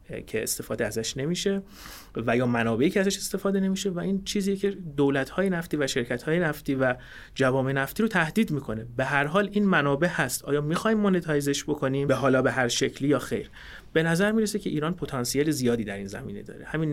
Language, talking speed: Persian, 195 wpm